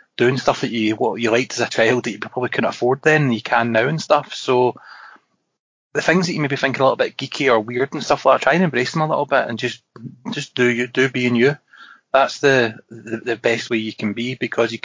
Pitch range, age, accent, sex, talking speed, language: 115-130 Hz, 20-39, British, male, 265 wpm, English